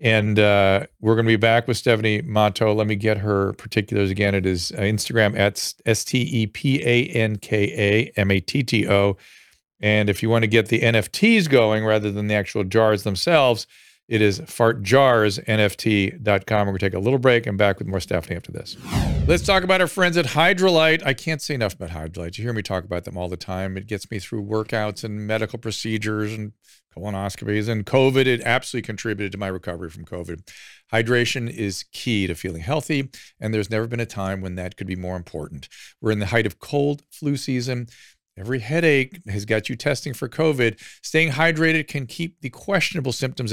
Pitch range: 105-135 Hz